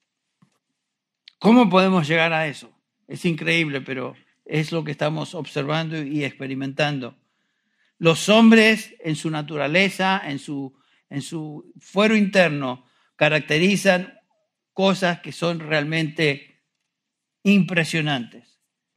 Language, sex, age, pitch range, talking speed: Spanish, male, 60-79, 150-185 Hz, 100 wpm